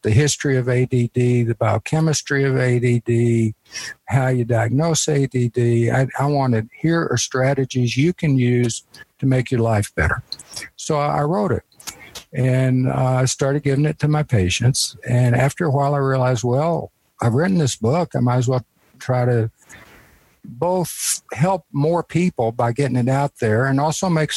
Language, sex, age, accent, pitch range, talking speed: English, male, 60-79, American, 120-145 Hz, 165 wpm